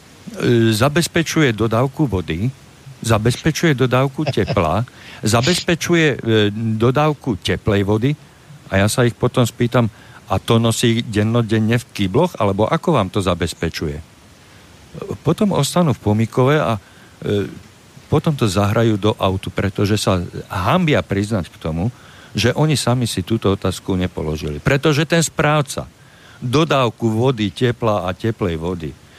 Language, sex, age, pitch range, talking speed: Slovak, male, 50-69, 100-140 Hz, 130 wpm